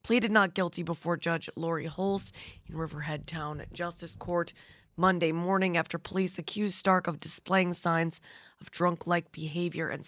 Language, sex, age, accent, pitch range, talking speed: English, female, 20-39, American, 160-190 Hz, 150 wpm